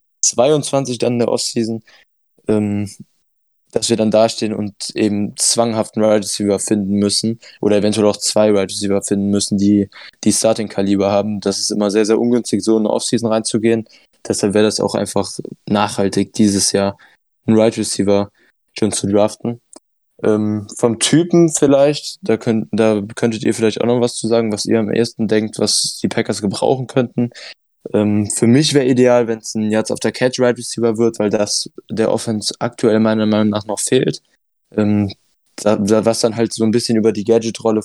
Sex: male